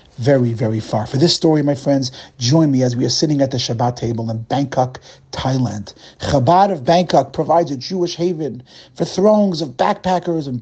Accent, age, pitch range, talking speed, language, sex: American, 40-59, 130-175 Hz, 185 wpm, English, male